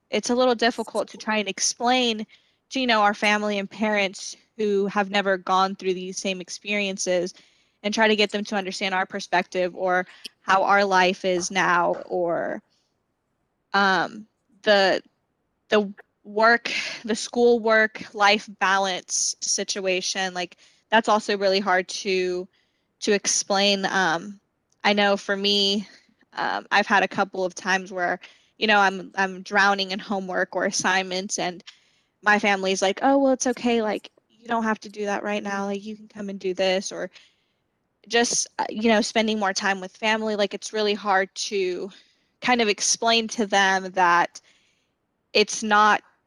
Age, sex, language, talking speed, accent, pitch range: 10-29, female, English, 160 wpm, American, 190-215 Hz